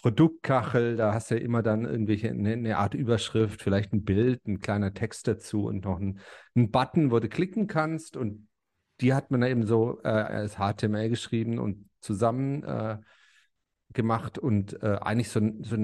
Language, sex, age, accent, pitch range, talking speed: German, male, 40-59, German, 110-130 Hz, 180 wpm